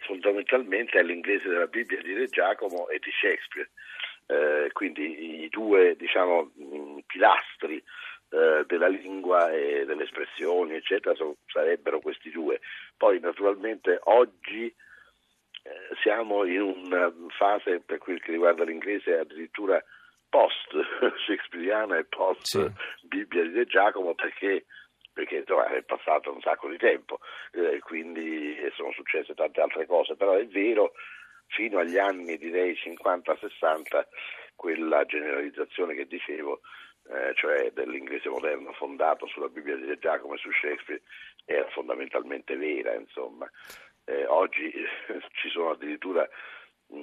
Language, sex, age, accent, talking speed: Italian, male, 50-69, native, 125 wpm